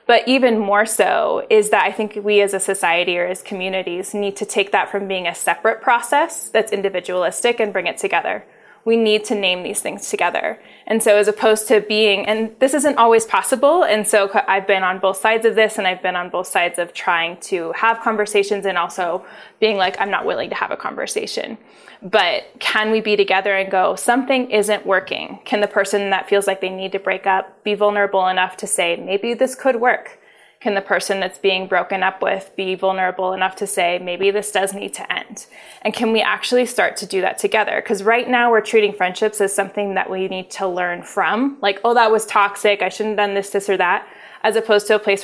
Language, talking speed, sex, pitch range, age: English, 225 wpm, female, 190-220 Hz, 20-39